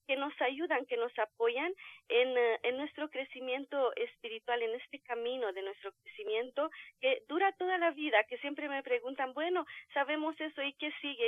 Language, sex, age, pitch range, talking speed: Spanish, female, 40-59, 230-325 Hz, 170 wpm